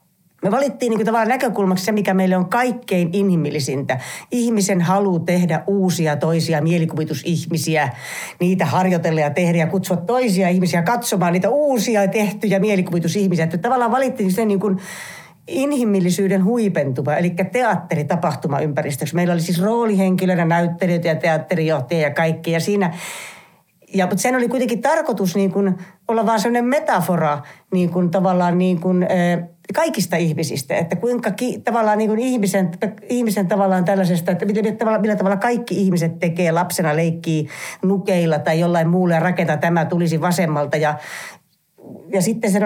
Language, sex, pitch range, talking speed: Finnish, female, 165-200 Hz, 140 wpm